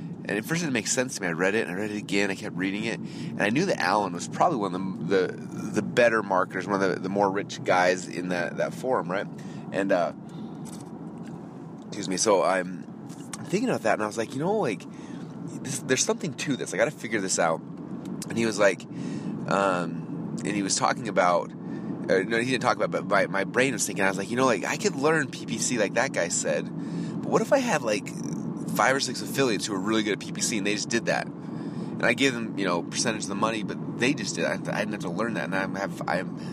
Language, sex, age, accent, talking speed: English, male, 30-49, American, 260 wpm